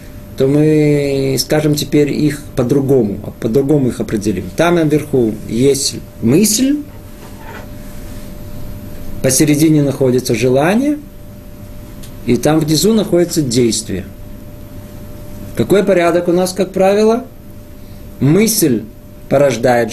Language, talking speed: Russian, 85 wpm